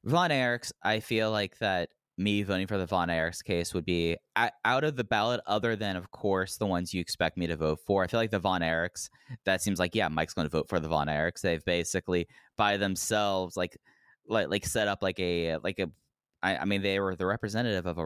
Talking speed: 235 wpm